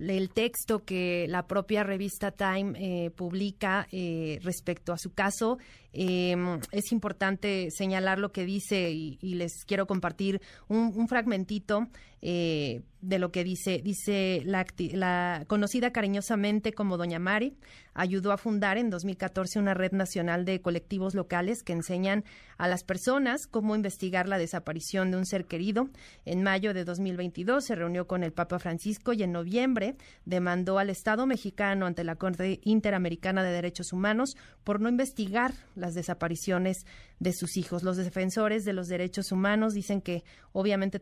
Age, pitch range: 30-49, 180-210 Hz